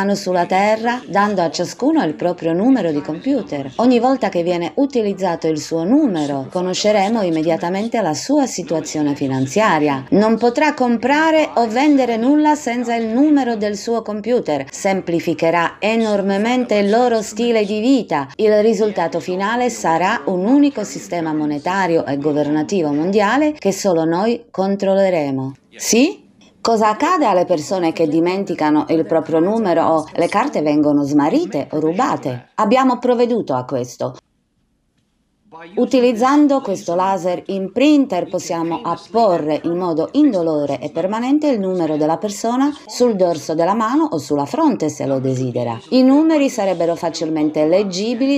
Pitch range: 160-235 Hz